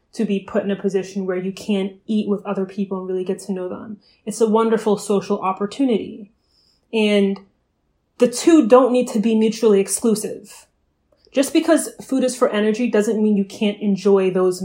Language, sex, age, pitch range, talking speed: English, female, 30-49, 200-245 Hz, 185 wpm